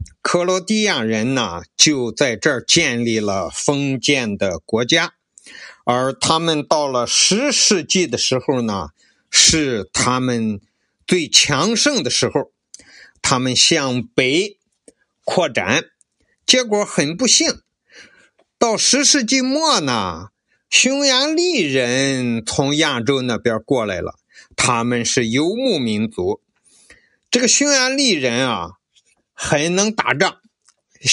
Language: Chinese